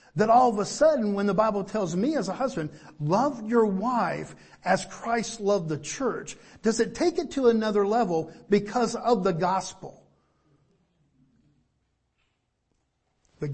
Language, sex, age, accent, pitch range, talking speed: English, male, 50-69, American, 150-190 Hz, 145 wpm